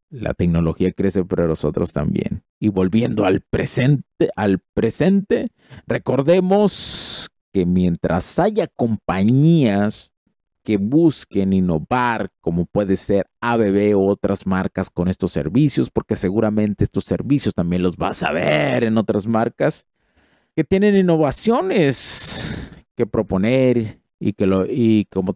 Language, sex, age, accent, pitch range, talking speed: Spanish, male, 50-69, Mexican, 95-125 Hz, 125 wpm